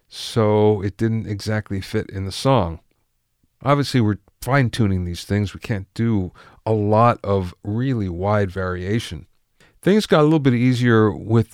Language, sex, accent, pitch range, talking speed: English, male, American, 95-120 Hz, 150 wpm